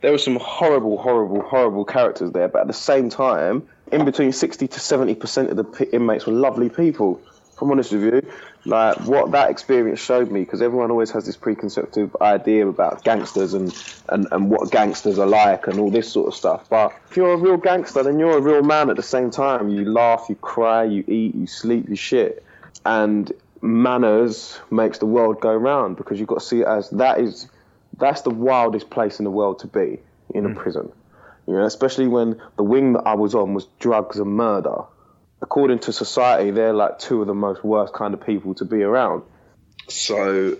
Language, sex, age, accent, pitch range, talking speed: English, male, 20-39, British, 100-125 Hz, 210 wpm